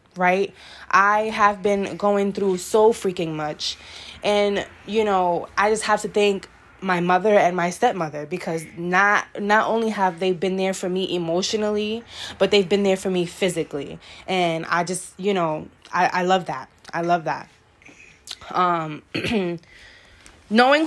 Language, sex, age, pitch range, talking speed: English, female, 20-39, 180-210 Hz, 155 wpm